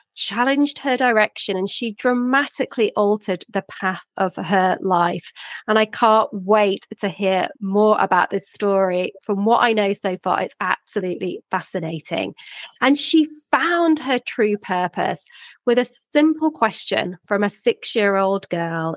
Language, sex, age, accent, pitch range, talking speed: English, female, 30-49, British, 195-265 Hz, 140 wpm